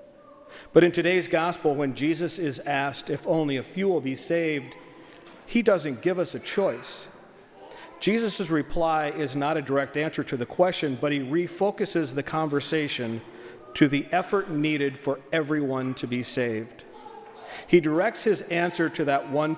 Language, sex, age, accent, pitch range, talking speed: English, male, 50-69, American, 135-170 Hz, 160 wpm